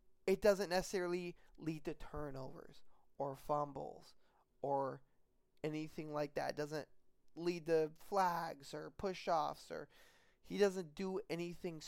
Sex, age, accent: male, 20-39, American